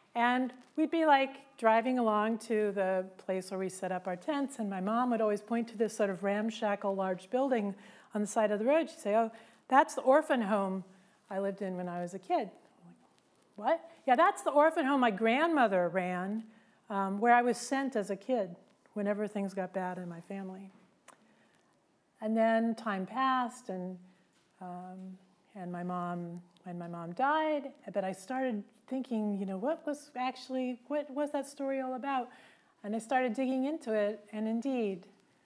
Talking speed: 185 wpm